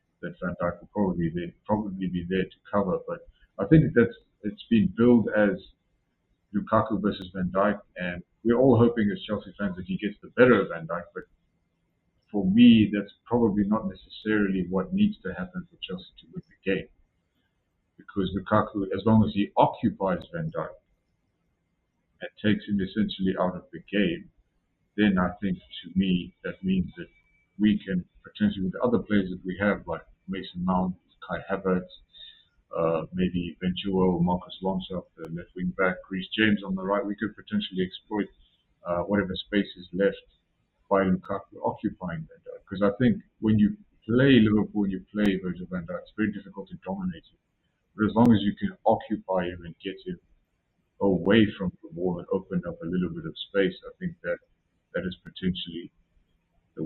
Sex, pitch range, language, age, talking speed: male, 90-110 Hz, English, 50-69, 180 wpm